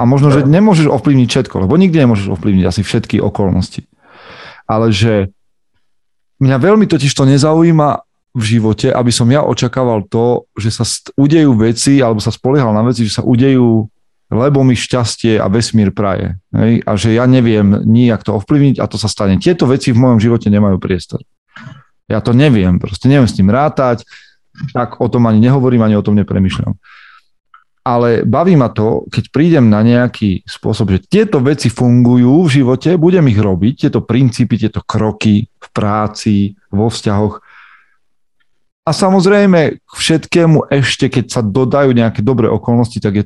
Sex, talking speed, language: male, 165 wpm, Slovak